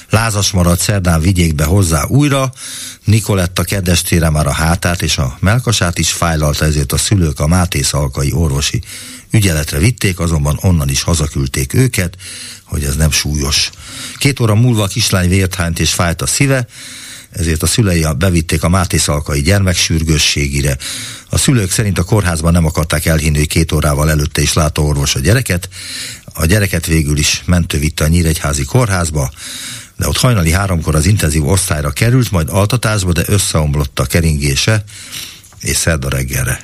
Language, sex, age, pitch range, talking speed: Hungarian, male, 60-79, 80-105 Hz, 155 wpm